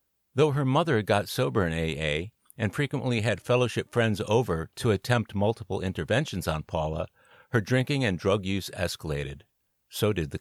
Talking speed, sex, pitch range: 160 wpm, male, 90-125 Hz